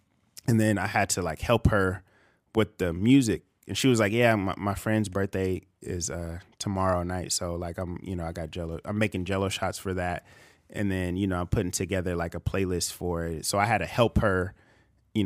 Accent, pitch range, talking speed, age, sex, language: American, 90-105 Hz, 225 wpm, 20-39, male, English